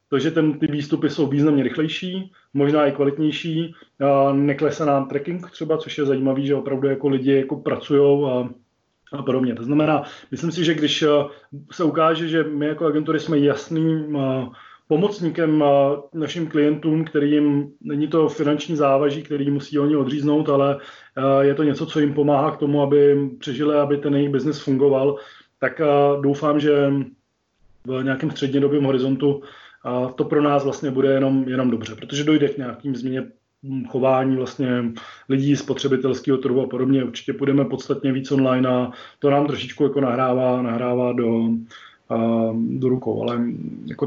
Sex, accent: male, native